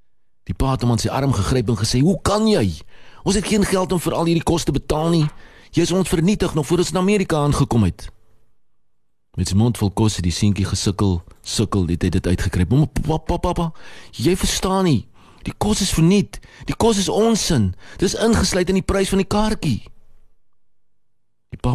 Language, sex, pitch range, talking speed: English, male, 95-130 Hz, 205 wpm